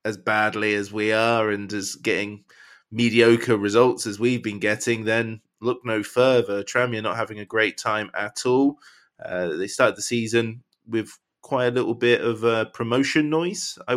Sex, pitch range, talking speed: male, 100-120 Hz, 175 wpm